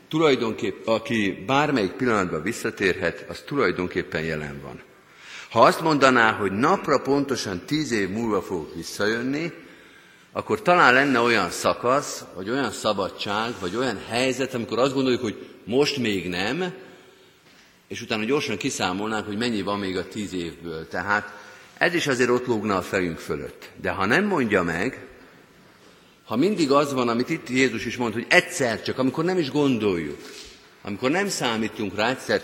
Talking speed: 155 wpm